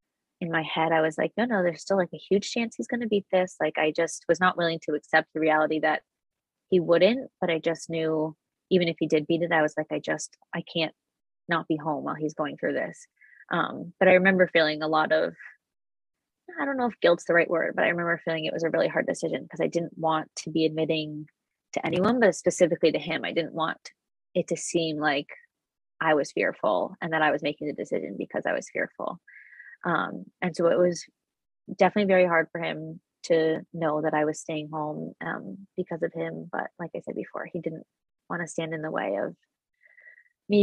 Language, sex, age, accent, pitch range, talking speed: English, female, 20-39, American, 160-185 Hz, 225 wpm